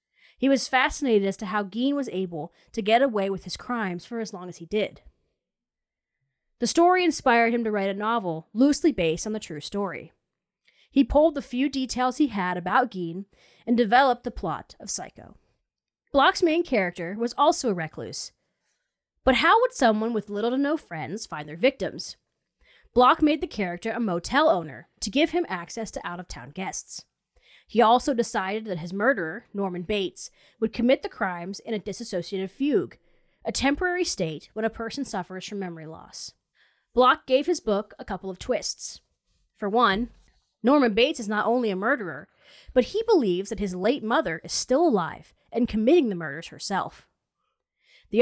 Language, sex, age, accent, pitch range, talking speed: English, female, 30-49, American, 190-265 Hz, 175 wpm